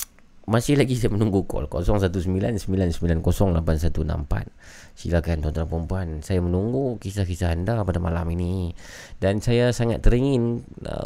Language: Malay